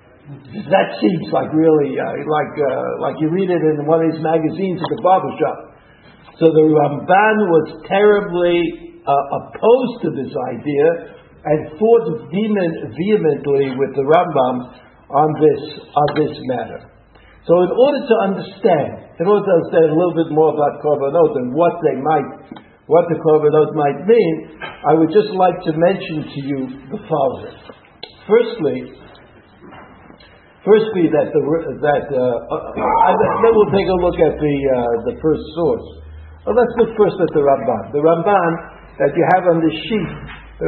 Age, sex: 60-79, male